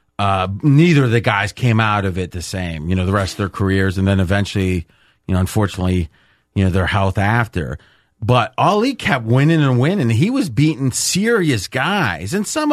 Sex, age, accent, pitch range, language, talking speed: male, 30-49, American, 110-155 Hz, English, 200 wpm